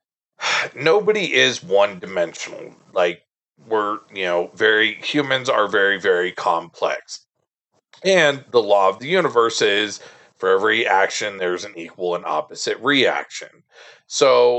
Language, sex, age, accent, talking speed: English, male, 40-59, American, 130 wpm